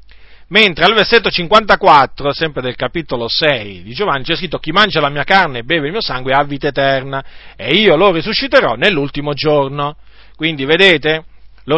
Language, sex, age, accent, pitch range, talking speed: Italian, male, 40-59, native, 120-180 Hz, 175 wpm